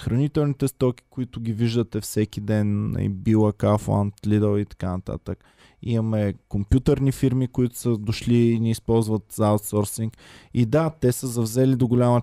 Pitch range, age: 110-130 Hz, 20-39